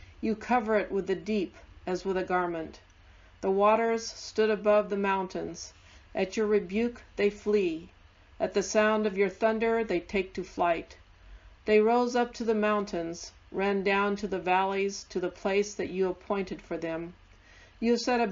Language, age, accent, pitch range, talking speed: English, 50-69, American, 170-210 Hz, 175 wpm